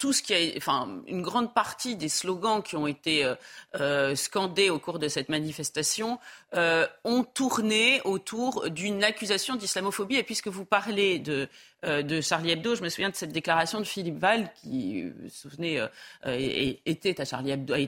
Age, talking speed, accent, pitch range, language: 40-59, 180 wpm, French, 165-230 Hz, French